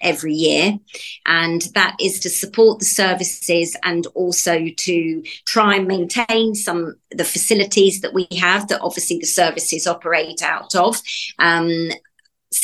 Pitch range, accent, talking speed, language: 170-205 Hz, British, 140 wpm, English